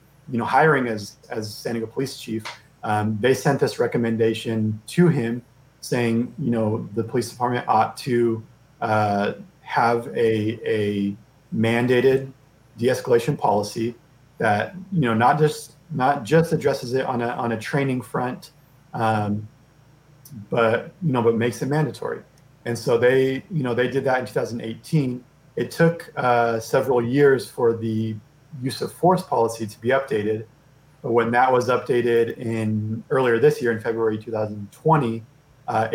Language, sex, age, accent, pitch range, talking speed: English, male, 30-49, American, 110-135 Hz, 150 wpm